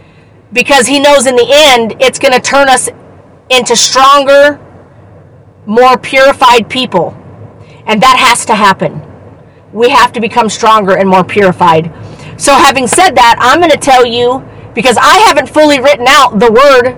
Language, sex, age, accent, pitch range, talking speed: English, female, 40-59, American, 210-270 Hz, 165 wpm